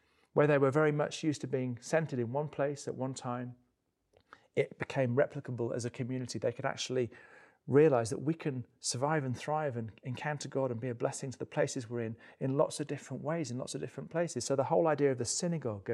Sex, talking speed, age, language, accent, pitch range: male, 225 wpm, 40-59, English, British, 120-145 Hz